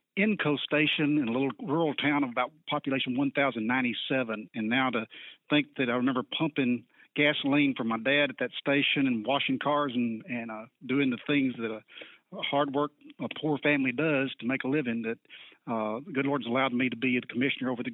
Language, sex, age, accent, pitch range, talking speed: English, male, 40-59, American, 120-145 Hz, 205 wpm